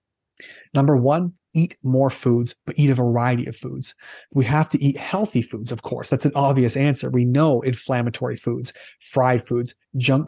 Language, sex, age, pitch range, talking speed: English, male, 30-49, 125-155 Hz, 175 wpm